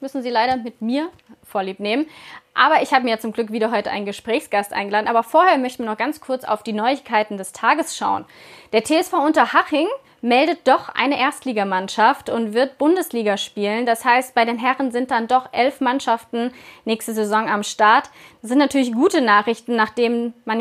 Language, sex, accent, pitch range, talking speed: German, female, German, 225-275 Hz, 185 wpm